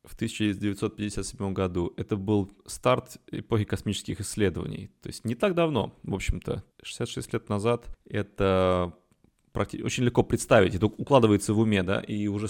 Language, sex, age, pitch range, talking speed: Russian, male, 20-39, 95-120 Hz, 145 wpm